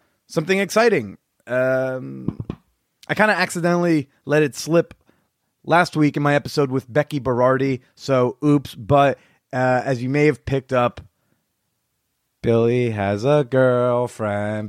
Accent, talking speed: American, 130 wpm